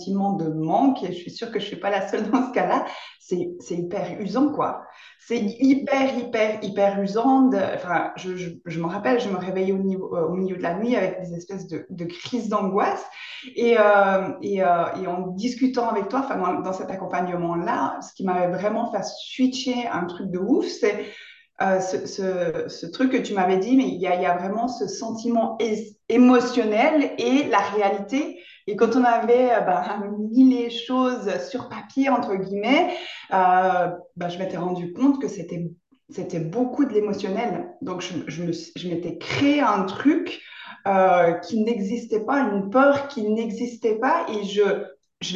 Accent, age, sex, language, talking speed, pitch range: French, 20-39, female, French, 170 wpm, 180-250 Hz